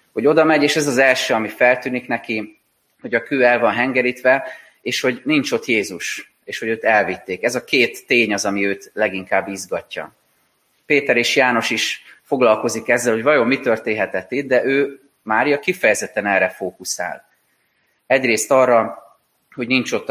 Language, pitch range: Hungarian, 110-135 Hz